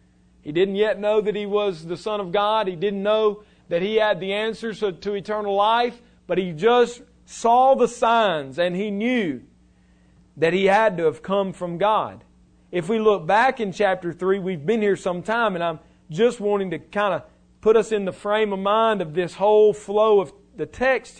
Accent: American